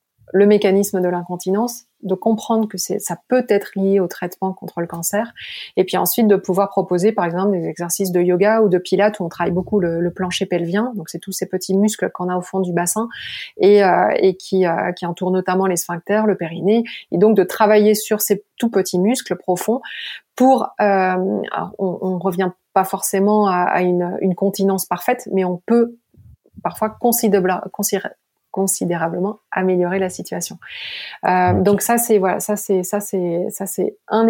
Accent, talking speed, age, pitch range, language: French, 190 wpm, 30-49, 180-210 Hz, French